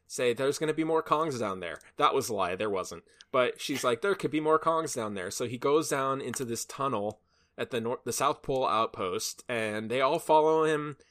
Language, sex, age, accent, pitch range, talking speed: English, male, 20-39, American, 110-140 Hz, 240 wpm